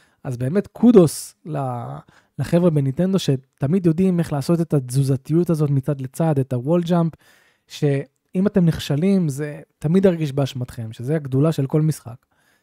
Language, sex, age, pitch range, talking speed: Hebrew, male, 20-39, 130-165 Hz, 135 wpm